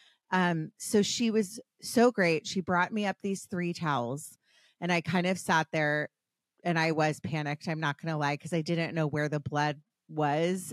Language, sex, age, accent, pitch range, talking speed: English, female, 30-49, American, 160-190 Hz, 200 wpm